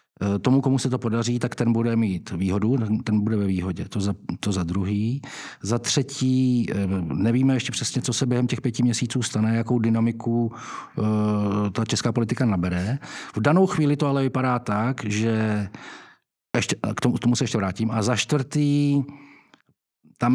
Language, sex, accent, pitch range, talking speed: Czech, male, native, 105-120 Hz, 170 wpm